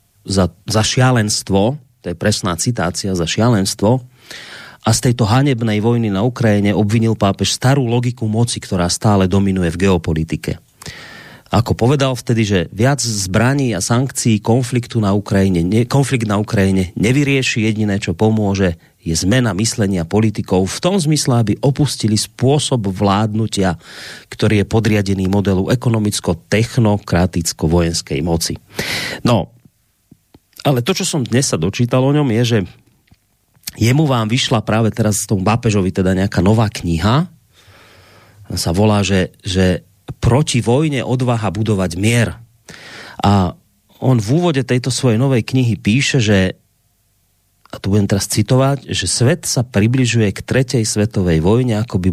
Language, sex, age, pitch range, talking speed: Slovak, male, 30-49, 100-125 Hz, 140 wpm